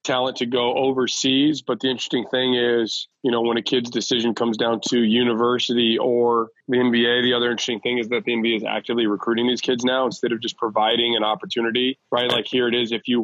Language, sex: English, male